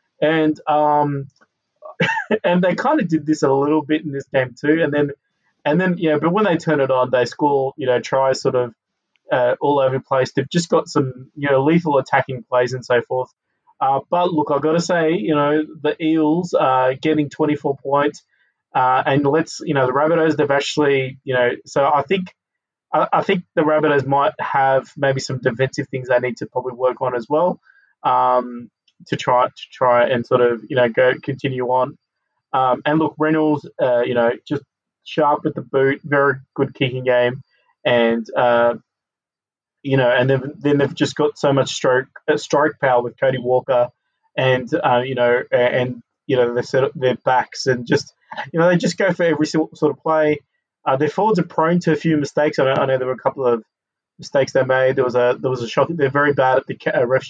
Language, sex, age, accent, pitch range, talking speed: English, male, 20-39, Australian, 130-155 Hz, 215 wpm